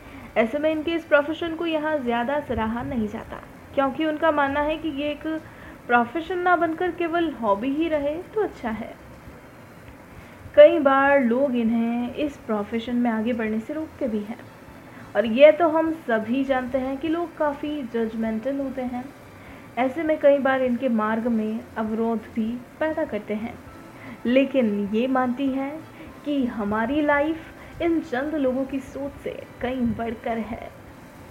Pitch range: 235-310 Hz